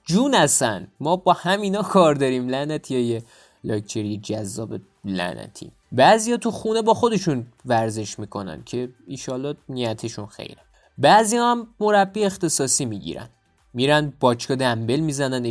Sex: male